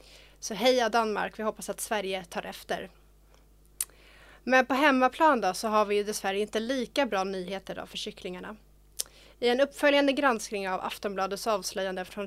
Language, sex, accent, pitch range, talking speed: Swedish, female, native, 195-235 Hz, 155 wpm